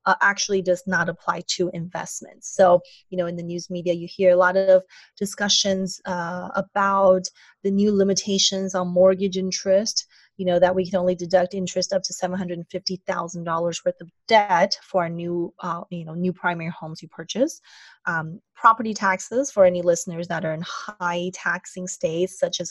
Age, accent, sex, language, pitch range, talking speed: 20-39, American, female, English, 175-200 Hz, 175 wpm